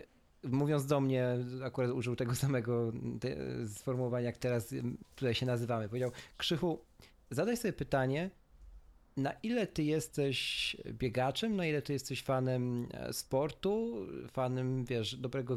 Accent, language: native, Polish